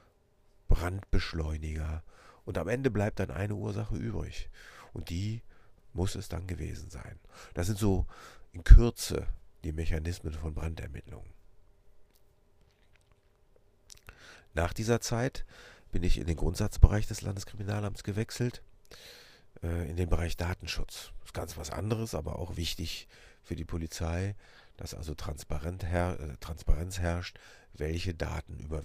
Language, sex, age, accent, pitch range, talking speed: German, male, 40-59, German, 80-100 Hz, 120 wpm